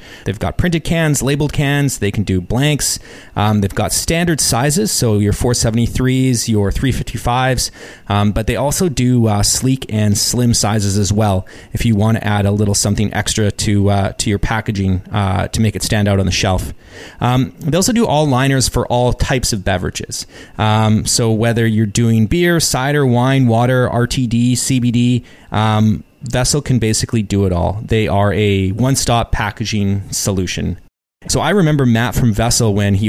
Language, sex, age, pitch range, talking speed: English, male, 30-49, 105-125 Hz, 180 wpm